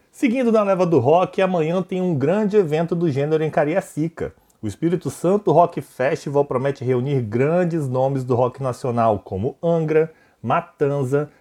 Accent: Brazilian